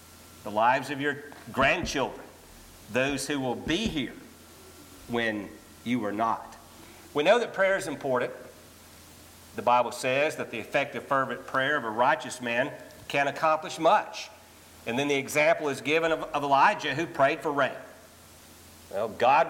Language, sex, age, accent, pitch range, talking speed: English, male, 50-69, American, 110-155 Hz, 155 wpm